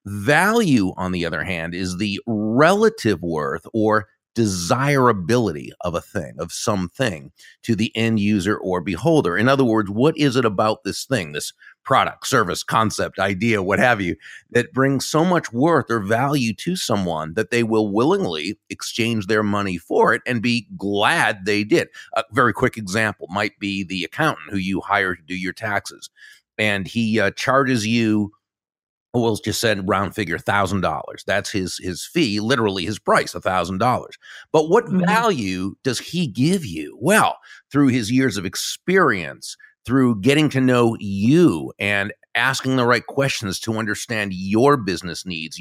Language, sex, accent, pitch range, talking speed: English, male, American, 100-130 Hz, 165 wpm